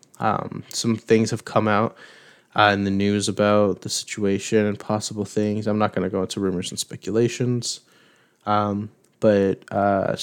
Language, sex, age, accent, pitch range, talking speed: English, male, 20-39, American, 100-115 Hz, 165 wpm